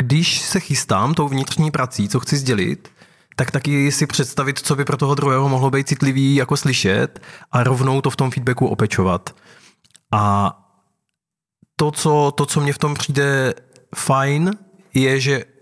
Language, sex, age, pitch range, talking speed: Czech, male, 20-39, 120-145 Hz, 160 wpm